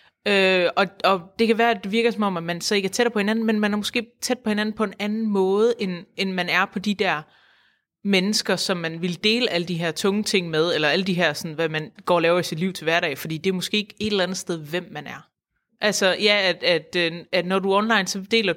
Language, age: Danish, 30-49